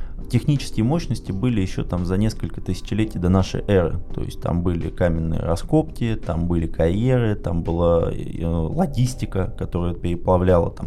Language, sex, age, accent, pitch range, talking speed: Russian, male, 20-39, native, 90-110 Hz, 140 wpm